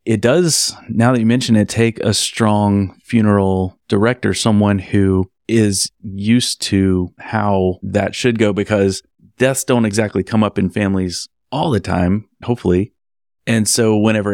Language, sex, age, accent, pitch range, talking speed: English, male, 30-49, American, 95-110 Hz, 150 wpm